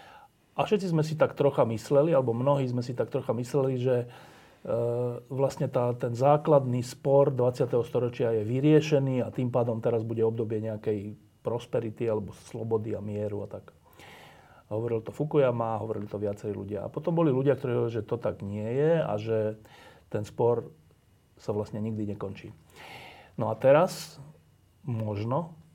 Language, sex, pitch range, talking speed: Slovak, male, 115-145 Hz, 165 wpm